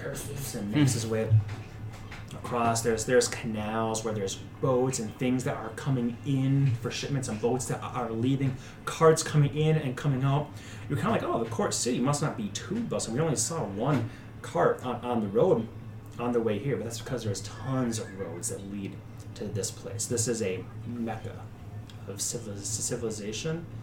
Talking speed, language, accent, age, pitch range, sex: 185 wpm, English, American, 30-49, 110-130 Hz, male